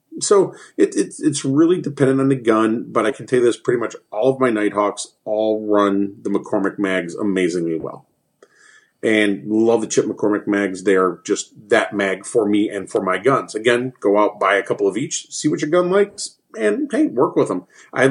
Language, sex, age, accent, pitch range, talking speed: English, male, 30-49, American, 105-140 Hz, 210 wpm